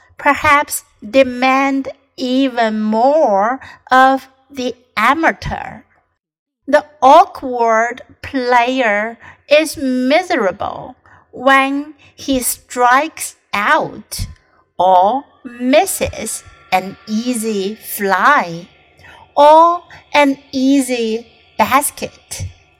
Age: 50-69